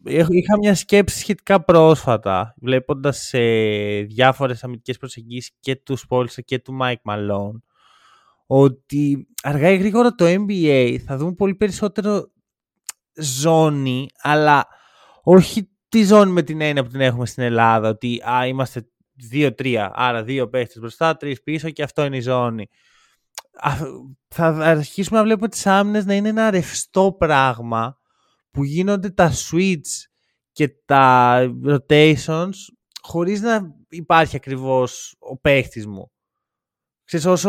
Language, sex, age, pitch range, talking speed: Greek, male, 20-39, 130-175 Hz, 130 wpm